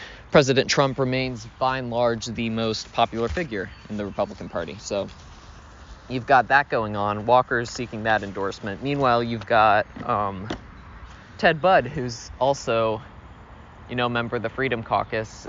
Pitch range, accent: 105-130 Hz, American